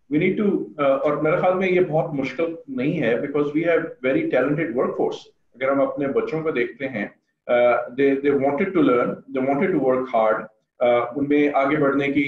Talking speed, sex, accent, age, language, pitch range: 185 wpm, male, Indian, 40-59, English, 135-160 Hz